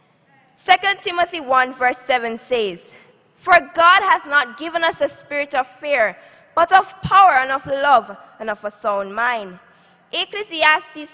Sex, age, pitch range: female, 20-39, 255-360 Hz